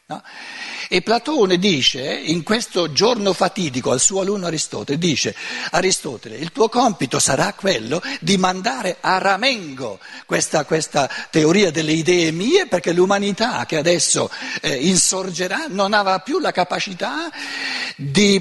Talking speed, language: 130 wpm, Italian